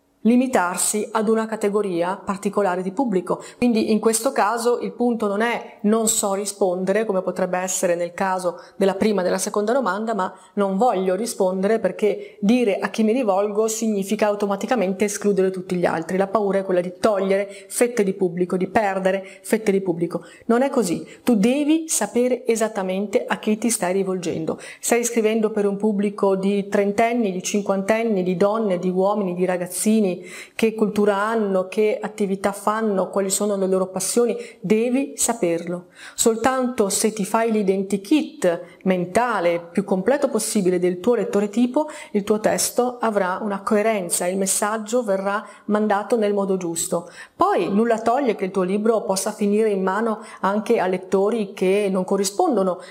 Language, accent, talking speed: Italian, native, 160 wpm